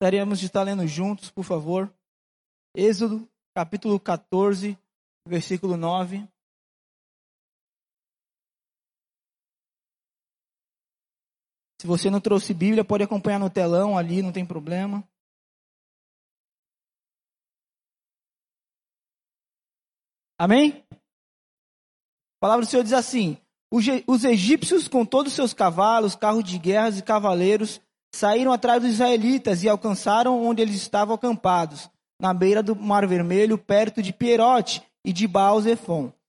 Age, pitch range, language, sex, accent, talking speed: 20-39, 195-255 Hz, Portuguese, male, Brazilian, 105 wpm